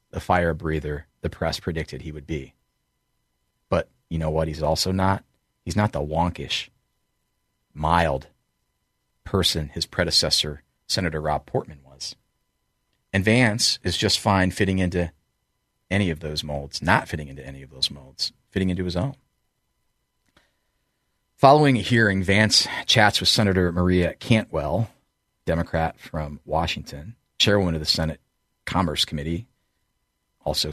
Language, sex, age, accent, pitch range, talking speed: English, male, 40-59, American, 80-100 Hz, 135 wpm